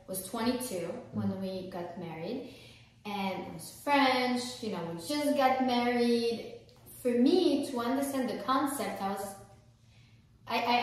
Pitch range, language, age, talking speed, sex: 190-250 Hz, English, 20-39, 145 wpm, female